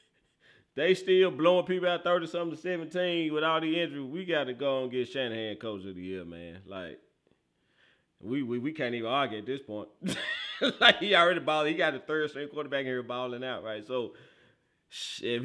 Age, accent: 30-49, American